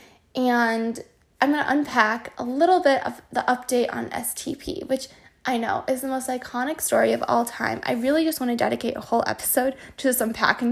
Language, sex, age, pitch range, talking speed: English, female, 10-29, 240-285 Hz, 200 wpm